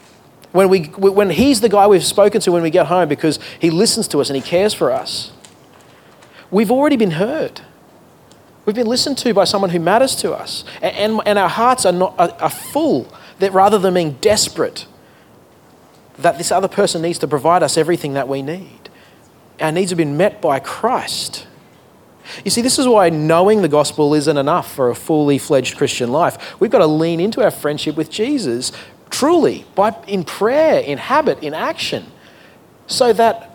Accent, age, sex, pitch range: Australian, 30-49, male, 150-210 Hz